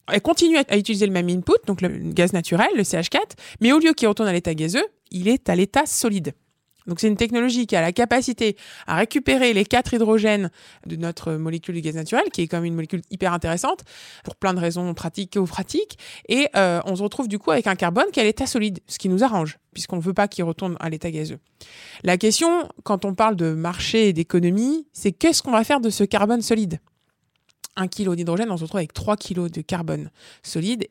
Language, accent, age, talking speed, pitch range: French, French, 20-39, 230 wpm, 175-240 Hz